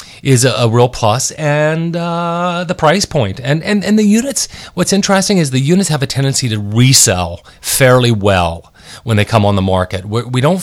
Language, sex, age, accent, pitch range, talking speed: English, male, 30-49, American, 105-135 Hz, 190 wpm